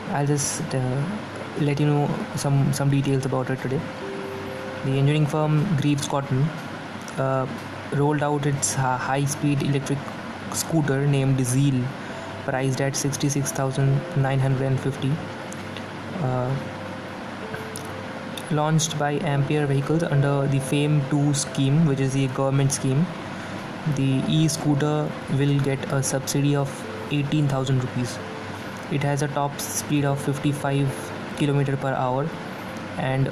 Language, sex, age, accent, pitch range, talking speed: English, male, 20-39, Indian, 135-150 Hz, 115 wpm